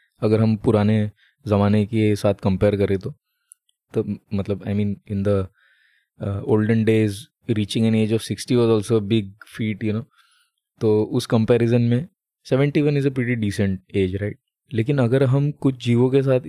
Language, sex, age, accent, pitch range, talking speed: Hindi, male, 20-39, native, 105-130 Hz, 160 wpm